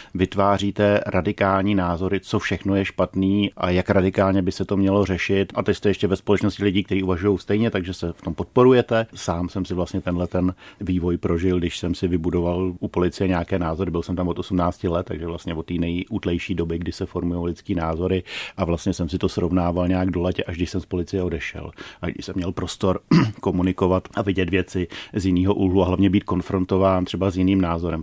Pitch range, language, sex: 90-100 Hz, Czech, male